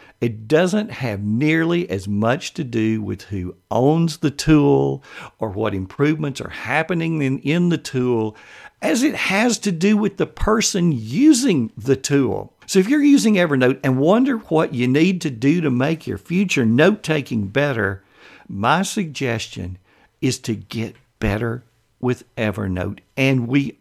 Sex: male